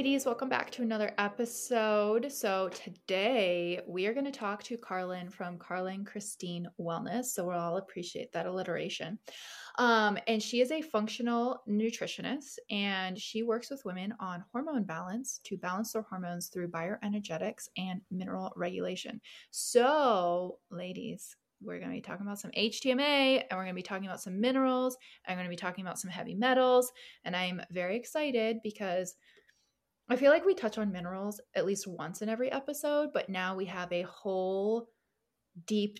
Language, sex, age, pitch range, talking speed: English, female, 20-39, 185-235 Hz, 170 wpm